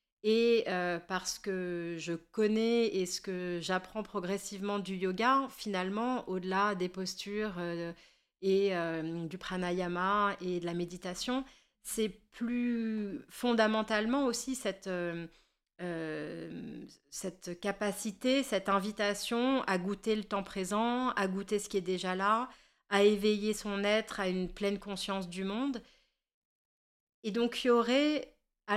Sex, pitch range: female, 180-220 Hz